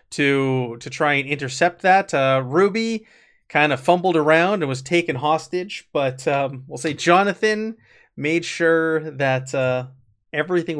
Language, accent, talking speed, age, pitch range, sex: English, American, 145 wpm, 30-49, 130-175 Hz, male